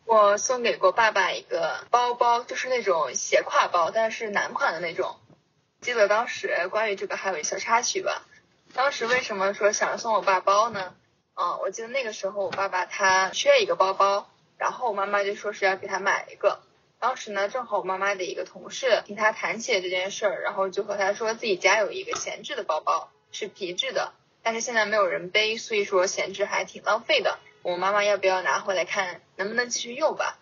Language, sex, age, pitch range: Chinese, female, 10-29, 195-240 Hz